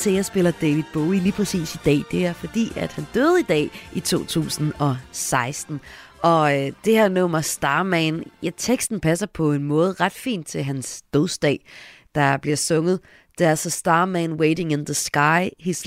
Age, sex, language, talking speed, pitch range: 30-49, female, Danish, 170 wpm, 145-180 Hz